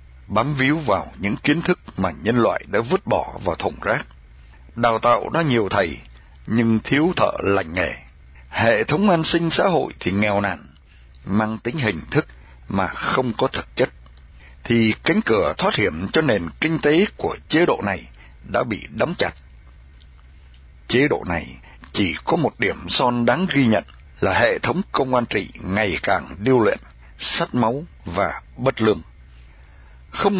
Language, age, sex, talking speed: Vietnamese, 60-79, male, 170 wpm